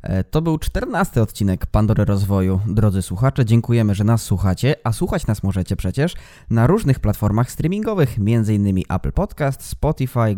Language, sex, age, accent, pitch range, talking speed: Polish, male, 20-39, native, 105-135 Hz, 145 wpm